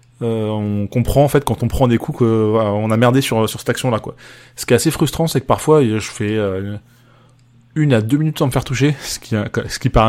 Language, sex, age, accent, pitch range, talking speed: French, male, 20-39, French, 115-135 Hz, 260 wpm